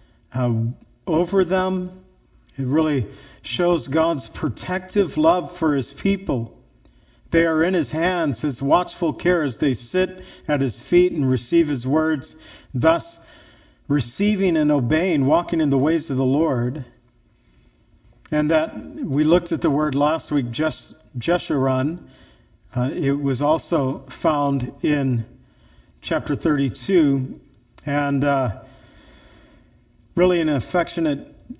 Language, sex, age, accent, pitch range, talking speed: English, male, 50-69, American, 125-165 Hz, 120 wpm